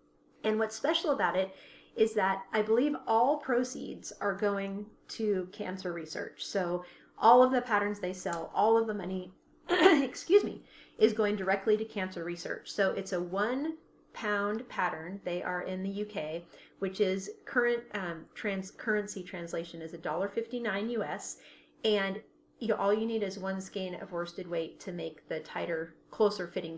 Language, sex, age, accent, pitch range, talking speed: English, female, 30-49, American, 170-215 Hz, 160 wpm